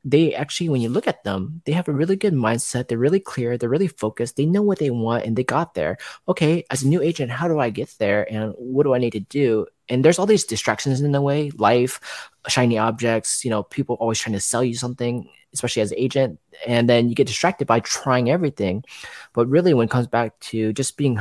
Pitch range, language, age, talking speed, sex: 110-130 Hz, English, 20-39, 245 wpm, male